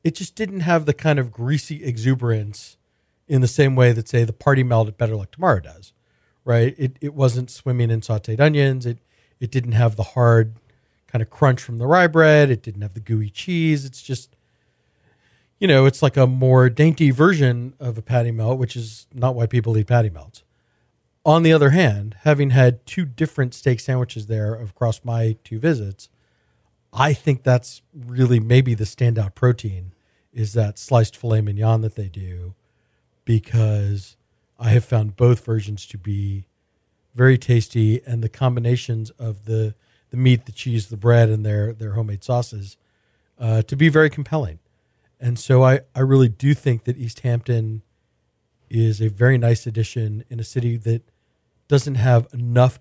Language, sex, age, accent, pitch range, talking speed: English, male, 40-59, American, 110-130 Hz, 180 wpm